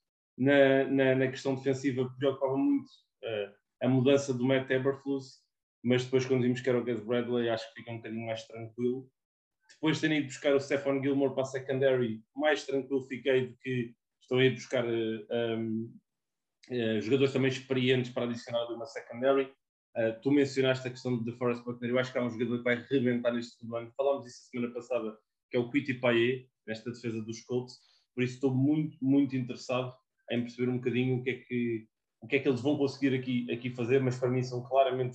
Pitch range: 120-145 Hz